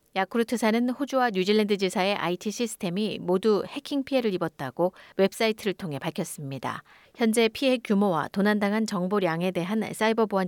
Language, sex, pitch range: Korean, female, 180-230 Hz